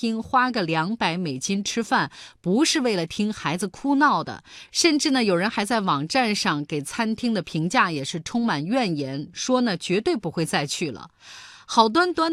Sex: female